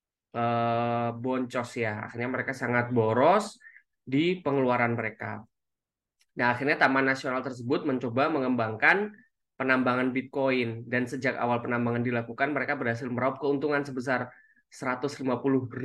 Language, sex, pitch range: Indonesian, male, 120-140 Hz